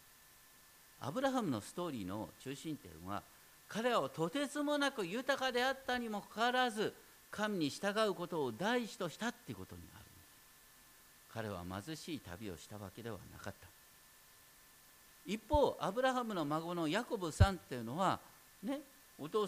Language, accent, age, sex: Japanese, native, 50-69, male